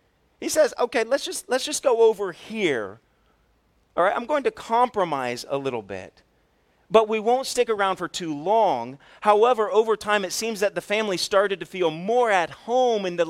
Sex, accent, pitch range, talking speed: male, American, 140-225 Hz, 195 wpm